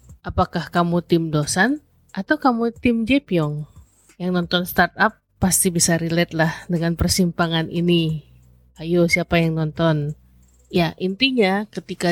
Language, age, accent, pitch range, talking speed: Indonesian, 30-49, native, 170-210 Hz, 125 wpm